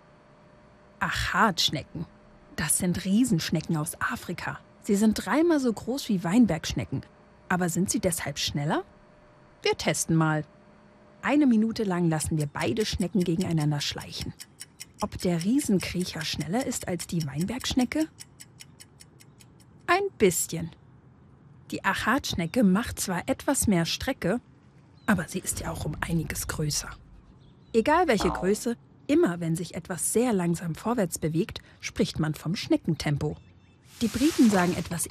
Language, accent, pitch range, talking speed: German, German, 160-230 Hz, 125 wpm